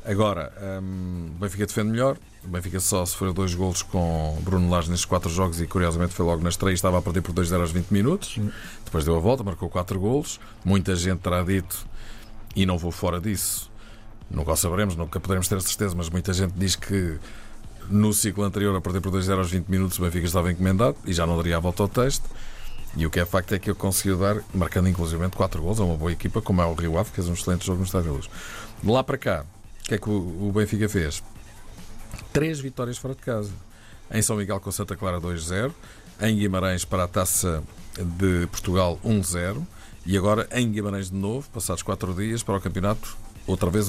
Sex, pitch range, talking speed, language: male, 90-105 Hz, 215 wpm, Portuguese